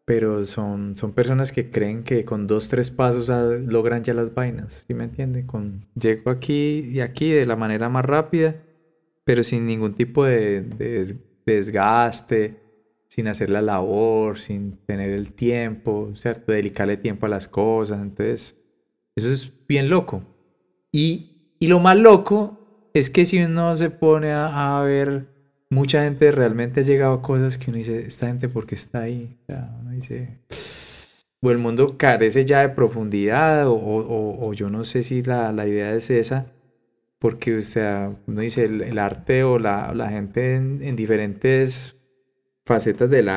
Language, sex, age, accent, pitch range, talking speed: Spanish, male, 20-39, Colombian, 110-135 Hz, 170 wpm